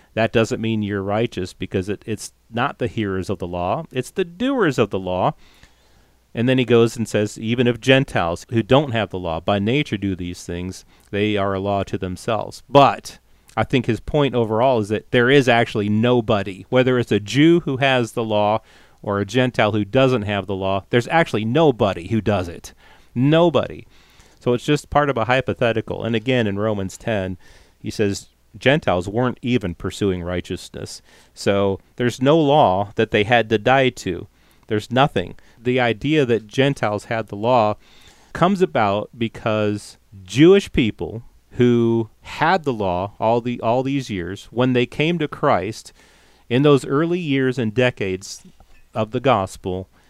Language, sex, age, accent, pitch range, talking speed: English, male, 40-59, American, 100-125 Hz, 175 wpm